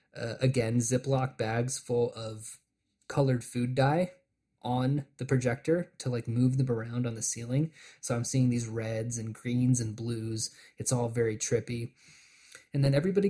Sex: male